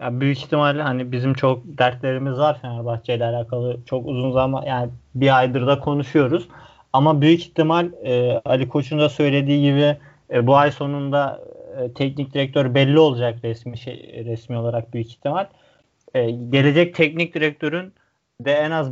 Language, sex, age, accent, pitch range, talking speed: Turkish, male, 30-49, native, 140-165 Hz, 160 wpm